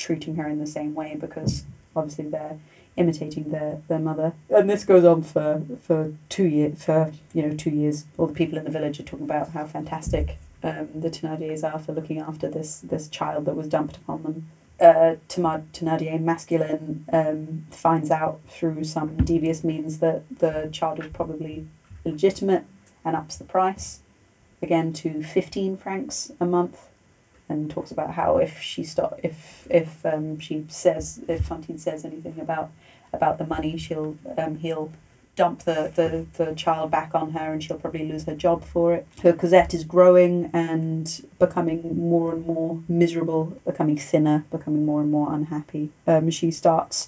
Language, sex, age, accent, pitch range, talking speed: English, female, 30-49, British, 150-165 Hz, 175 wpm